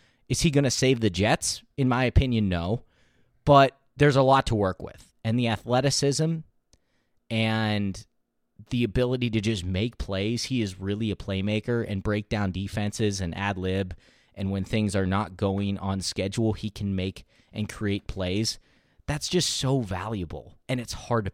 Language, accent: English, American